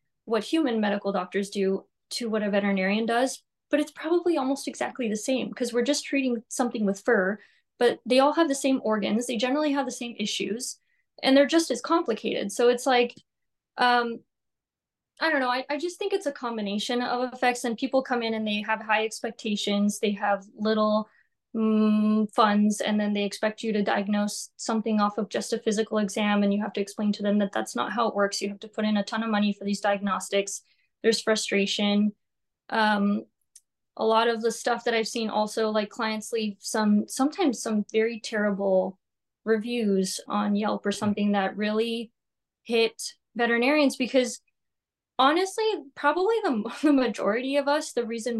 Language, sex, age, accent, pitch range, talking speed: English, female, 20-39, American, 210-255 Hz, 185 wpm